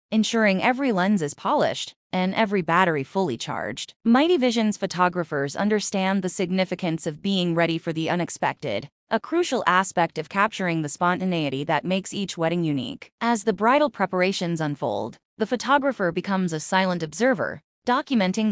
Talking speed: 150 wpm